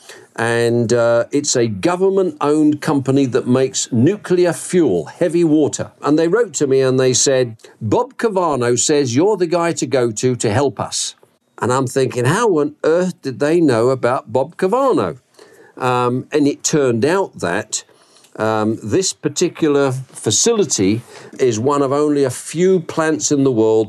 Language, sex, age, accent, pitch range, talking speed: English, male, 50-69, British, 120-155 Hz, 160 wpm